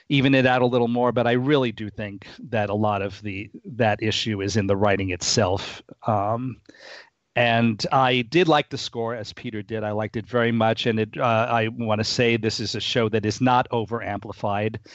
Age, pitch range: 40-59, 105-130 Hz